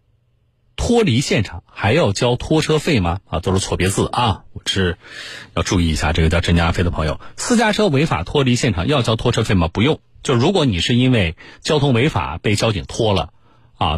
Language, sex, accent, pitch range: Chinese, male, native, 95-120 Hz